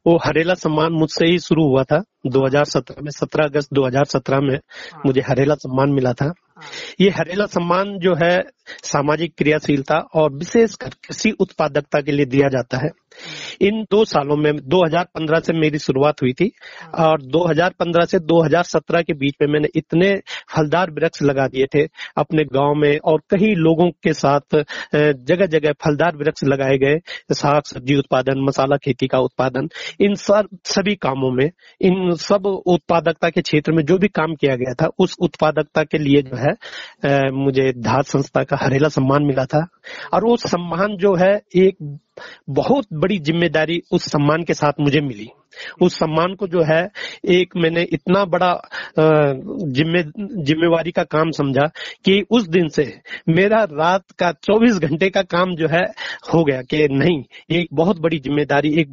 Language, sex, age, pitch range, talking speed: Hindi, male, 40-59, 145-180 Hz, 165 wpm